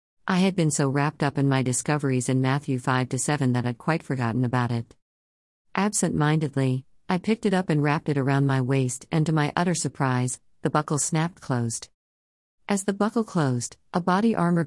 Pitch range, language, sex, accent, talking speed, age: 125-165 Hz, English, female, American, 190 wpm, 50-69